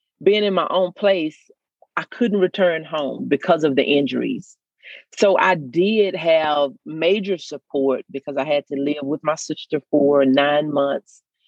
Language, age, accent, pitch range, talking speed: English, 40-59, American, 135-170 Hz, 155 wpm